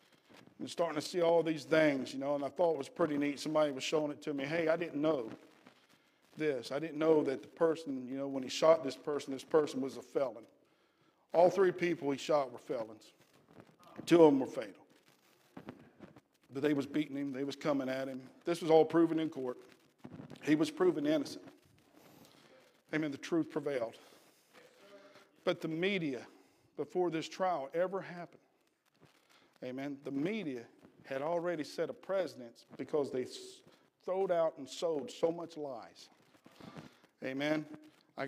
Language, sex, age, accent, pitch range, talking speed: English, male, 50-69, American, 145-175 Hz, 170 wpm